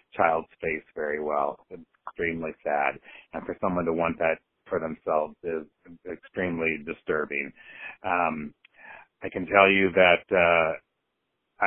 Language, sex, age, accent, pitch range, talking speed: English, male, 30-49, American, 80-90 Hz, 130 wpm